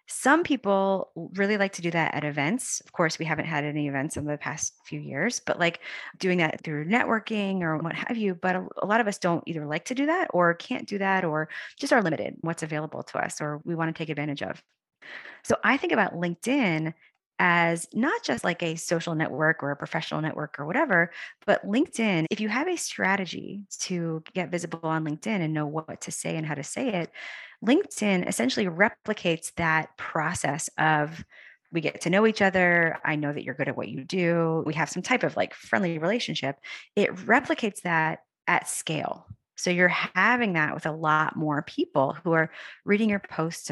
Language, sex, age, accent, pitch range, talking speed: English, female, 30-49, American, 155-200 Hz, 205 wpm